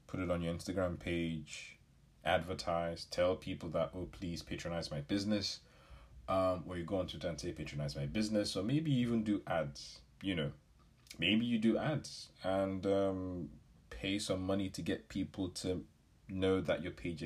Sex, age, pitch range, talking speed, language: male, 30-49, 80-105 Hz, 170 wpm, English